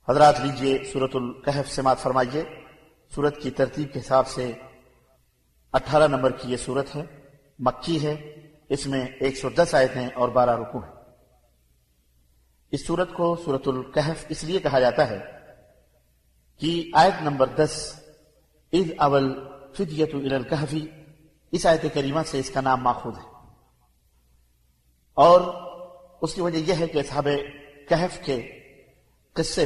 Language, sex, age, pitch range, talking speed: Arabic, male, 50-69, 130-160 Hz, 140 wpm